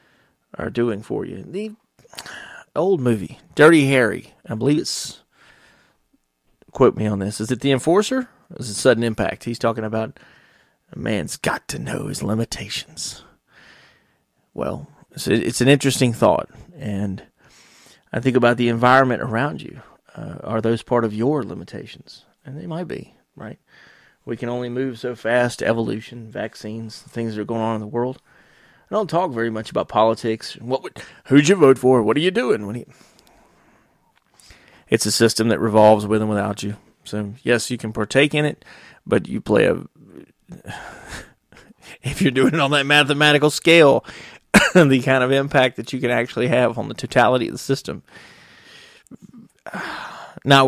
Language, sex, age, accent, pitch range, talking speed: English, male, 30-49, American, 110-135 Hz, 165 wpm